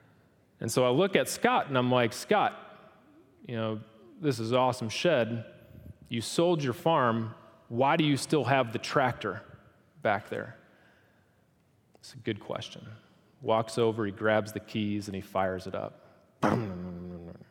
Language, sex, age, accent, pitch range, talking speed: English, male, 30-49, American, 105-115 Hz, 150 wpm